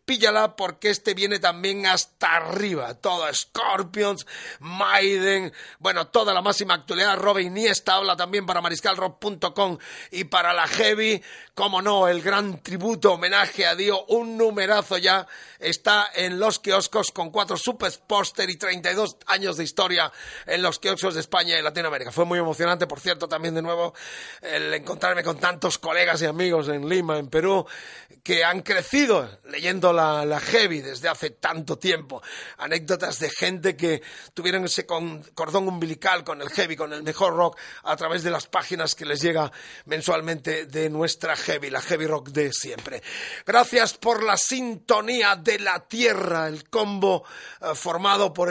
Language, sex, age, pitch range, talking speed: Spanish, male, 40-59, 165-200 Hz, 160 wpm